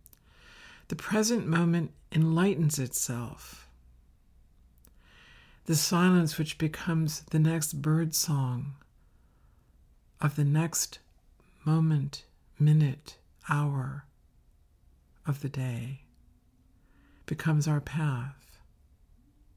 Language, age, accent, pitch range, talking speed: English, 60-79, American, 120-165 Hz, 75 wpm